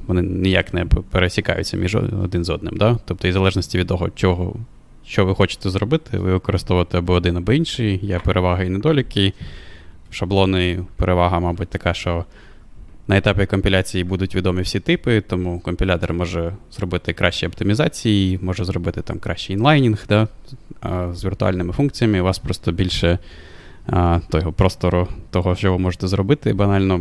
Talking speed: 160 wpm